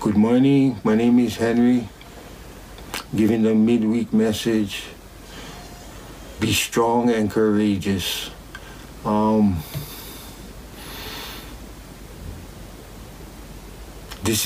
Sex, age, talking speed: male, 60-79, 70 wpm